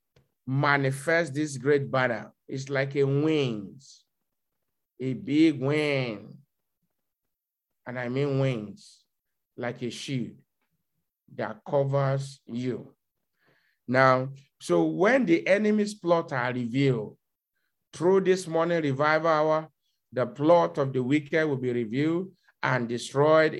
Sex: male